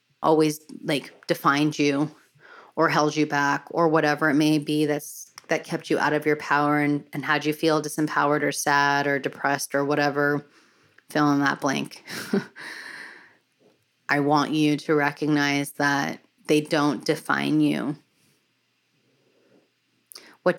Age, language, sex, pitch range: 30-49, English, female, 145-155 Hz